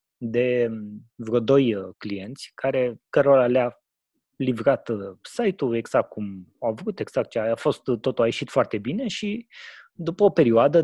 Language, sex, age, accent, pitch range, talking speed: Romanian, male, 20-39, native, 120-180 Hz, 145 wpm